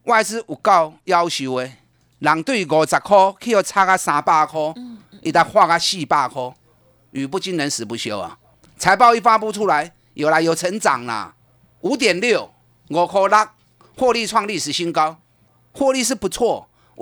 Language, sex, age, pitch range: Chinese, male, 30-49, 150-220 Hz